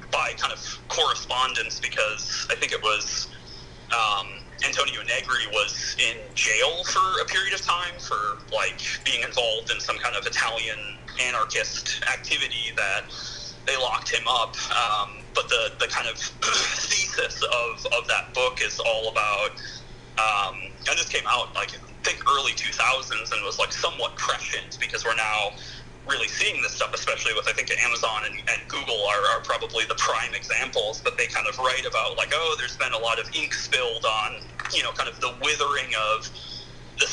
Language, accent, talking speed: English, American, 180 wpm